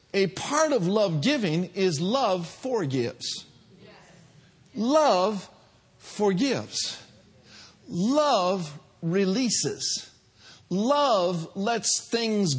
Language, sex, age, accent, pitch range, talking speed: English, male, 50-69, American, 150-220 Hz, 70 wpm